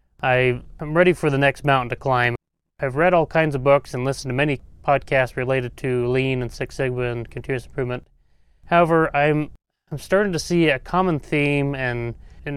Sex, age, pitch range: male, 30-49, 125-150 Hz